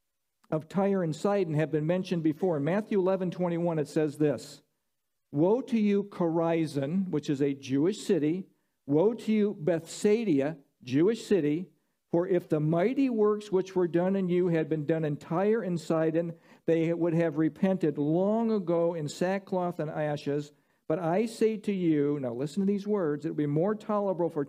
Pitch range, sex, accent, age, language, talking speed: 160-200 Hz, male, American, 50-69, English, 185 wpm